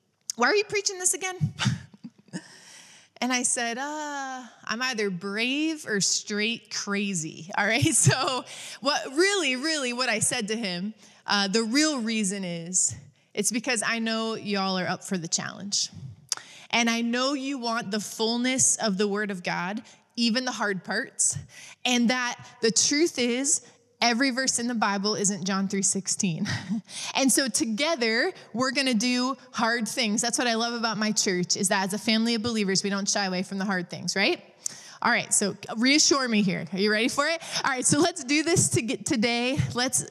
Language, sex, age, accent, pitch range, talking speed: English, female, 20-39, American, 200-250 Hz, 185 wpm